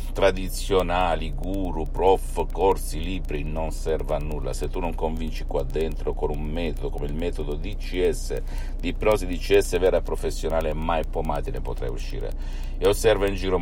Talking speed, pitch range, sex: 165 wpm, 65-85 Hz, male